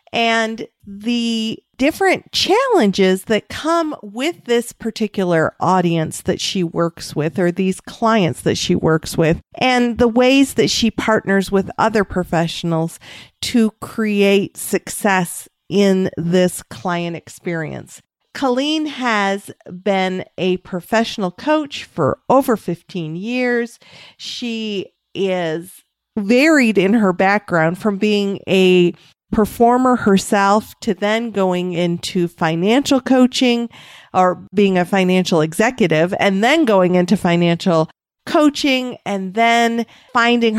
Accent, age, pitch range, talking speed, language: American, 50-69, 175-230 Hz, 115 wpm, English